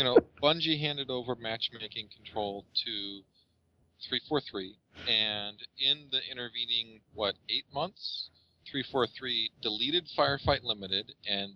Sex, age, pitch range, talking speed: male, 40-59, 95-120 Hz, 110 wpm